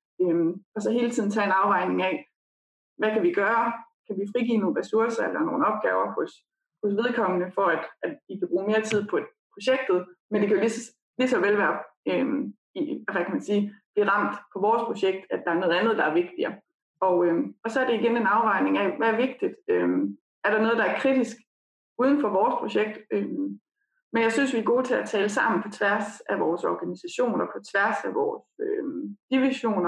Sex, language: female, Danish